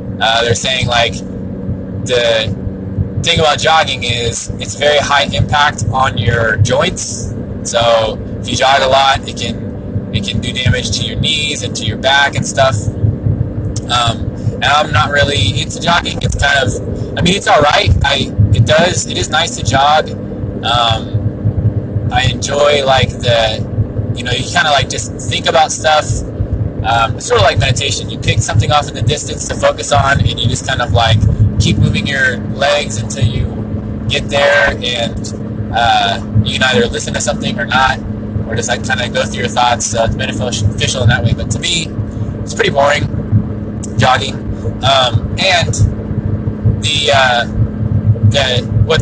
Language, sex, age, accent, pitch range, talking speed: English, male, 20-39, American, 105-120 Hz, 175 wpm